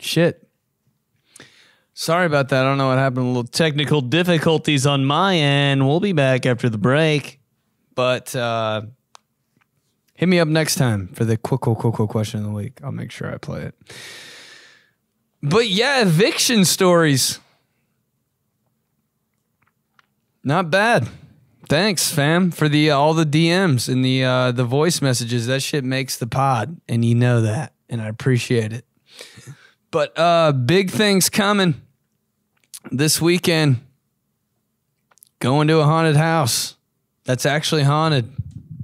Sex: male